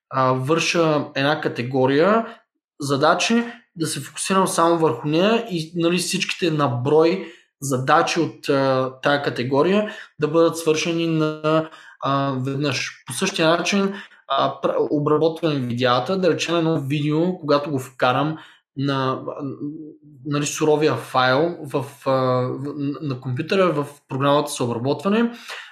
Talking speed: 115 wpm